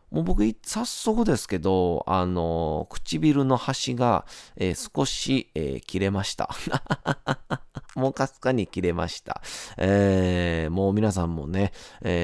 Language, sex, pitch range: Japanese, male, 85-120 Hz